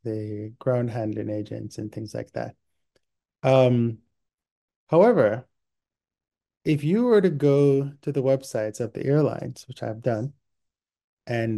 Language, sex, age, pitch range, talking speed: English, male, 20-39, 110-145 Hz, 130 wpm